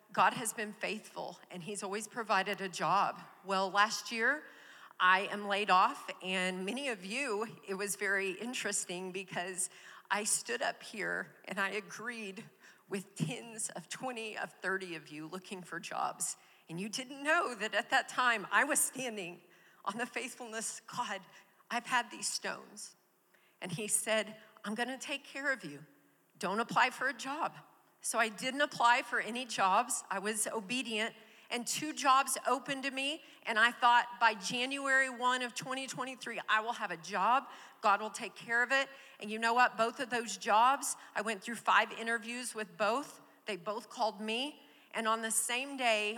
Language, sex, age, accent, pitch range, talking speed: English, female, 40-59, American, 195-240 Hz, 175 wpm